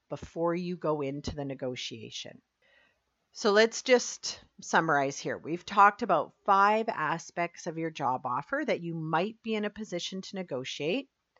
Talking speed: 155 wpm